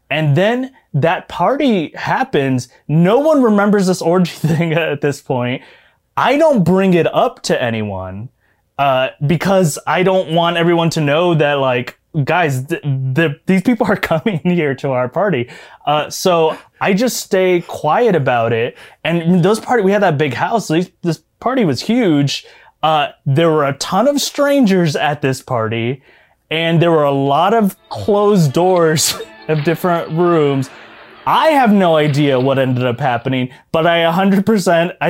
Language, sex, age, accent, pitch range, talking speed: English, male, 20-39, American, 135-180 Hz, 165 wpm